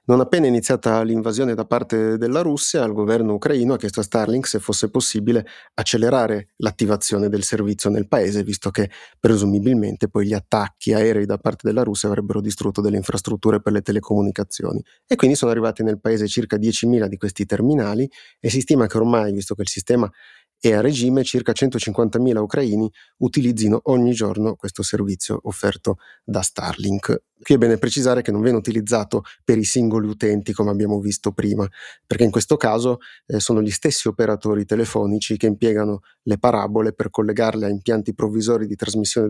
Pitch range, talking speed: 105-120 Hz, 175 wpm